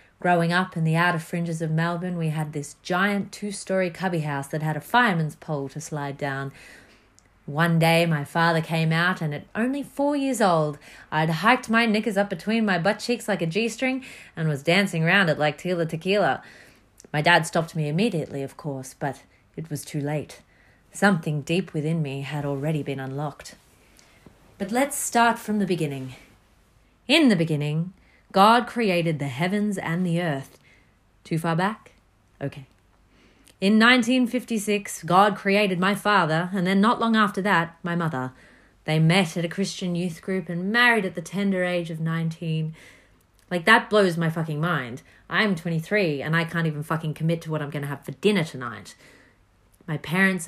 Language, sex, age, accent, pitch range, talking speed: English, female, 30-49, Australian, 155-195 Hz, 175 wpm